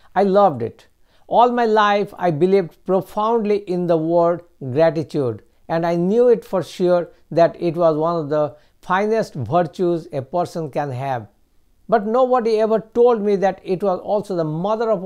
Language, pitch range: English, 150-195 Hz